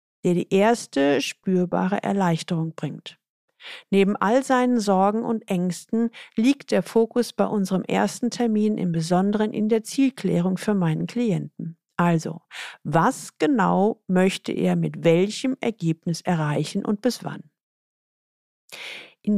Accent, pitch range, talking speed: German, 180-235 Hz, 125 wpm